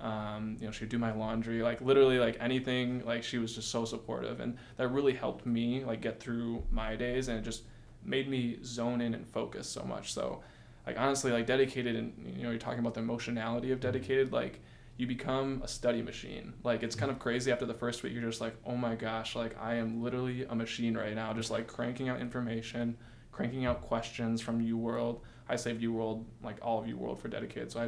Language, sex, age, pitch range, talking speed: English, male, 20-39, 110-120 Hz, 230 wpm